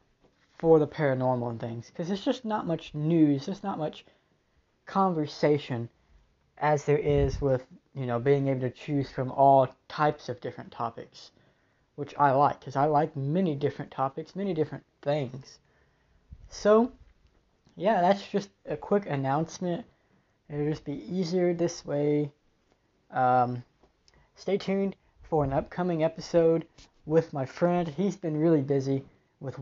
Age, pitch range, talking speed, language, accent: 20-39, 135-165 Hz, 145 wpm, English, American